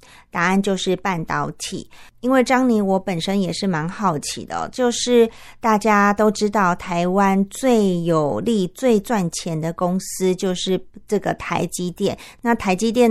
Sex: female